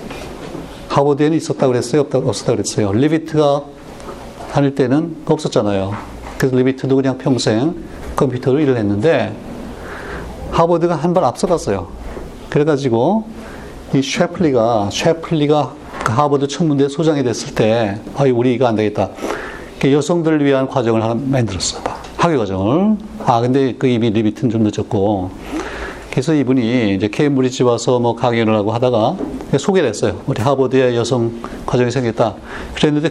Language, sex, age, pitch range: Korean, male, 40-59, 110-145 Hz